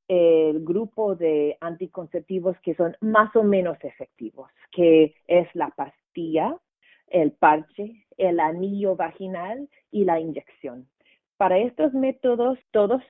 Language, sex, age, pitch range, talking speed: English, female, 40-59, 155-205 Hz, 120 wpm